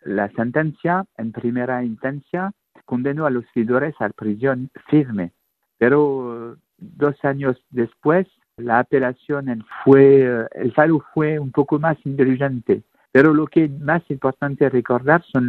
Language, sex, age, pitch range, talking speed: Spanish, male, 50-69, 120-150 Hz, 140 wpm